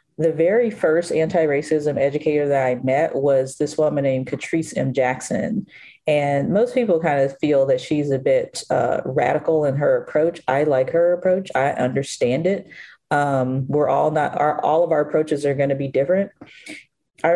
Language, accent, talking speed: English, American, 175 wpm